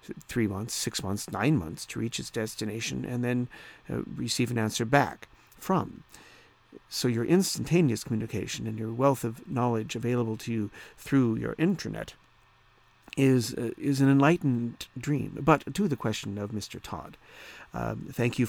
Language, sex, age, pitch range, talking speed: English, male, 50-69, 110-125 Hz, 160 wpm